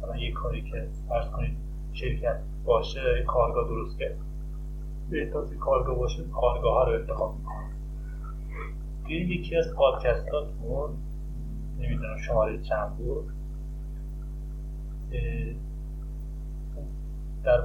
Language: Persian